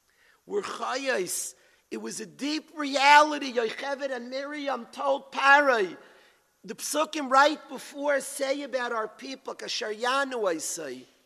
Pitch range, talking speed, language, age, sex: 235-310 Hz, 115 wpm, English, 50-69, male